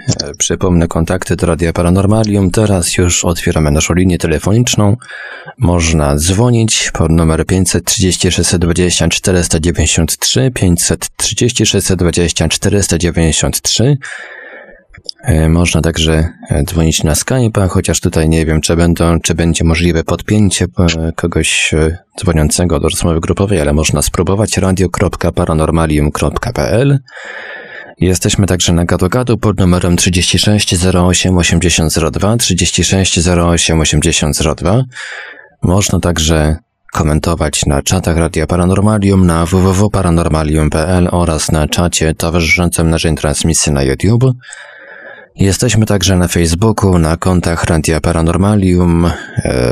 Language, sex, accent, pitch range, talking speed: Polish, male, native, 80-95 Hz, 90 wpm